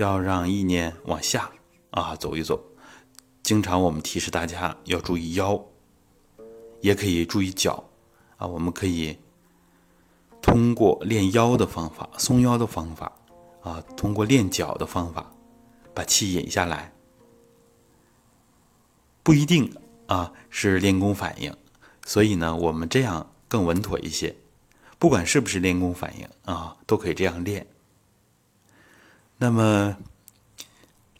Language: Chinese